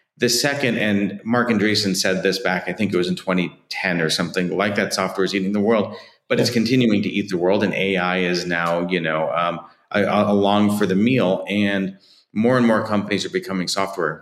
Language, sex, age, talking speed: English, male, 40-59, 205 wpm